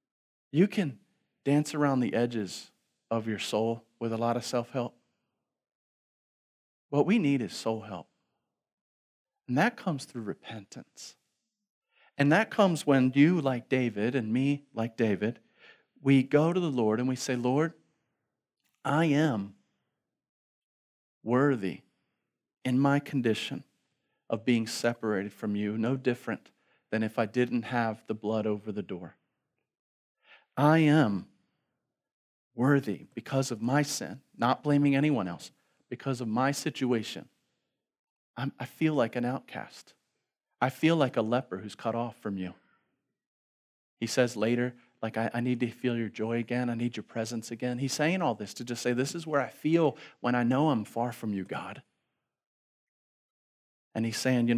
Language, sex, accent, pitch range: English, male, American, 115-140 Hz